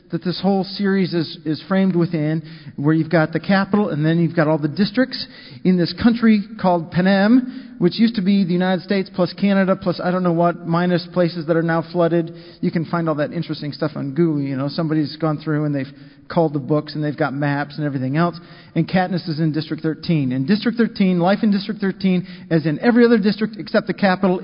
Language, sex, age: English, male, 40-59